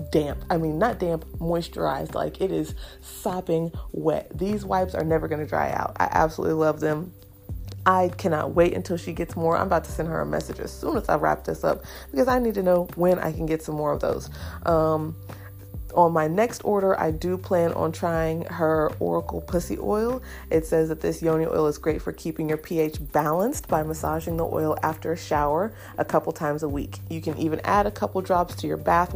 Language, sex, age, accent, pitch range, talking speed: English, female, 30-49, American, 140-175 Hz, 220 wpm